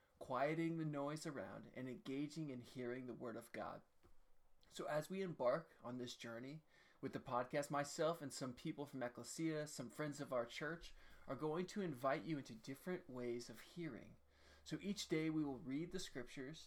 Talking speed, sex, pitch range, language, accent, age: 185 wpm, male, 120-155 Hz, English, American, 20-39